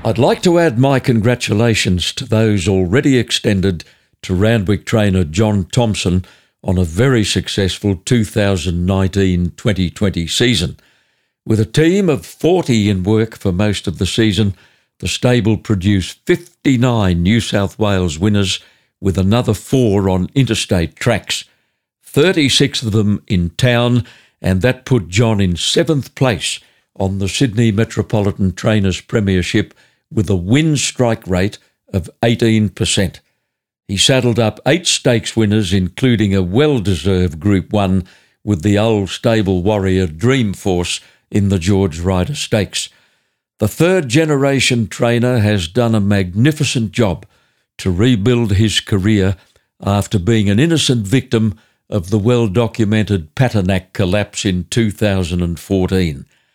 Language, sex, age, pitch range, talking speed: English, male, 60-79, 95-120 Hz, 125 wpm